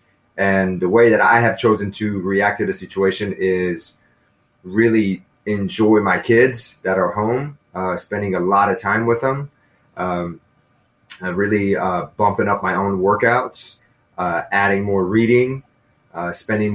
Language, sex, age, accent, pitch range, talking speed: English, male, 30-49, American, 95-110 Hz, 150 wpm